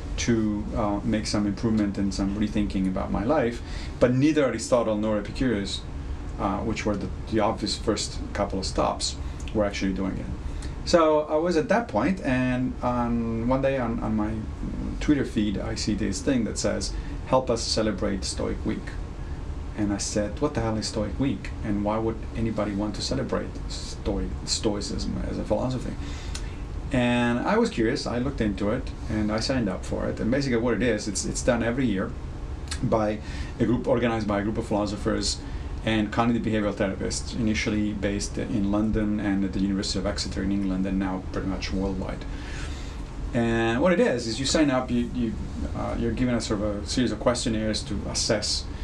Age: 40-59